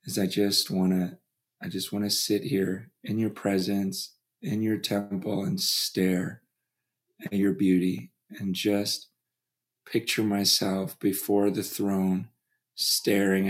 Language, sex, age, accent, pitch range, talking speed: English, male, 40-59, American, 95-110 Hz, 125 wpm